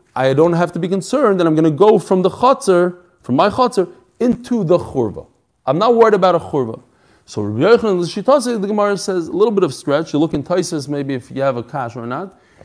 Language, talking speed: English, 230 wpm